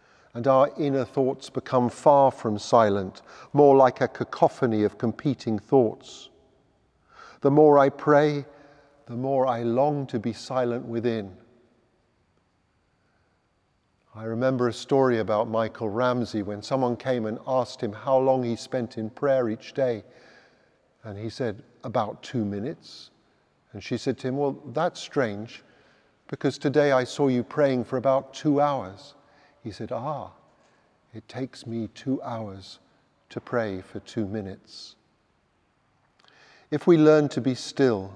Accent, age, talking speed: British, 50-69, 145 wpm